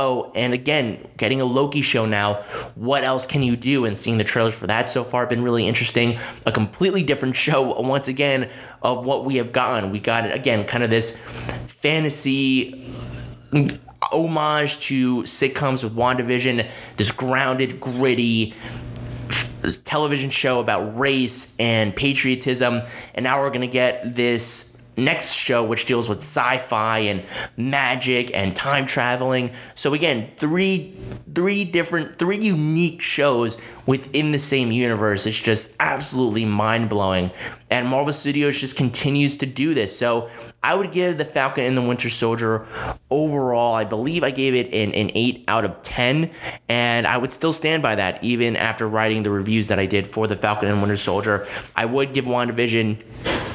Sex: male